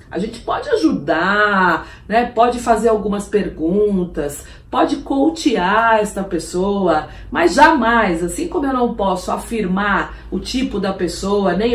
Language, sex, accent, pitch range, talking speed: Portuguese, female, Brazilian, 175-230 Hz, 135 wpm